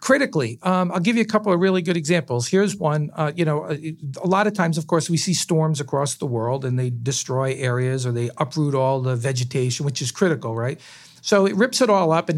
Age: 50-69